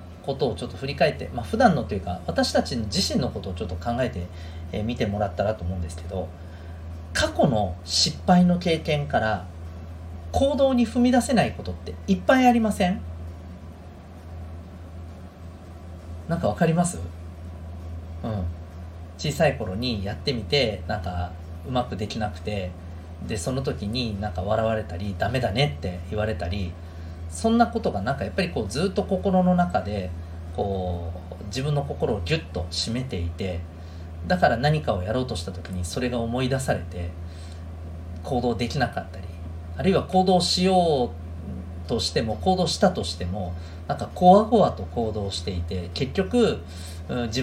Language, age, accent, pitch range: Japanese, 40-59, native, 85-120 Hz